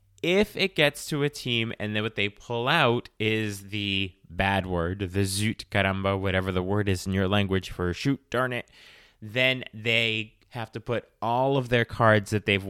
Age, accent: 30-49, American